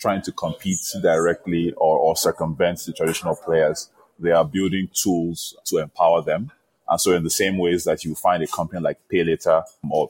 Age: 20-39